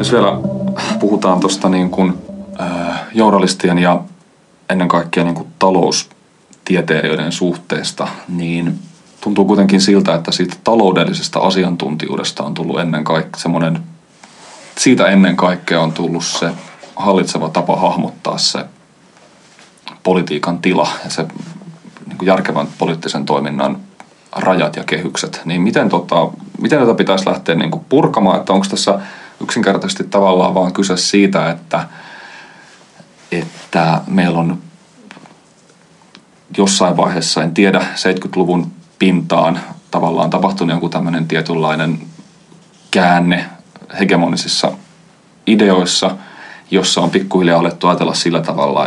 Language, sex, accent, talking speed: Finnish, male, native, 105 wpm